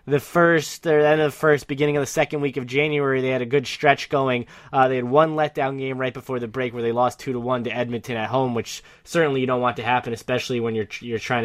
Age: 20-39